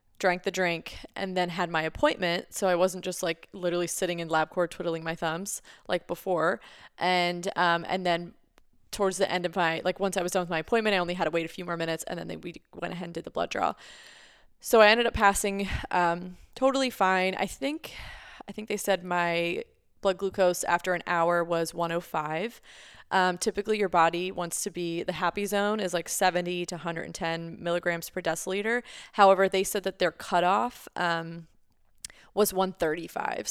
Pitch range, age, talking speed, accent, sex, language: 170-200 Hz, 20-39, 195 wpm, American, female, English